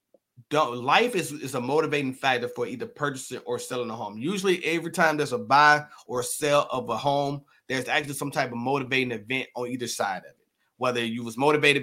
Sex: male